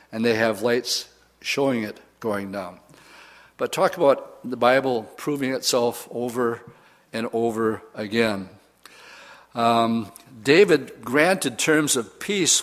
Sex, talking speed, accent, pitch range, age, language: male, 120 wpm, American, 115-130 Hz, 60-79, English